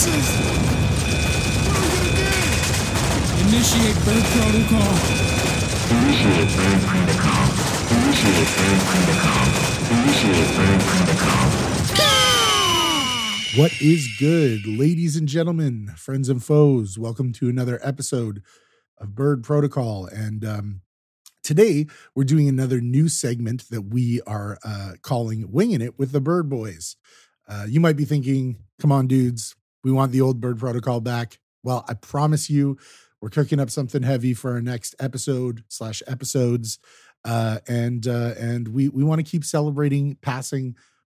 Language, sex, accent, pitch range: English, male, American, 110-140 Hz